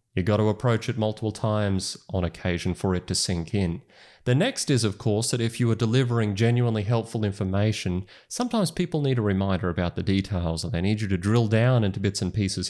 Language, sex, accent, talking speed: English, male, Australian, 215 wpm